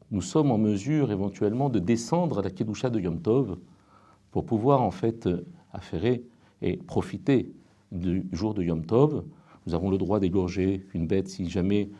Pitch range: 95-120 Hz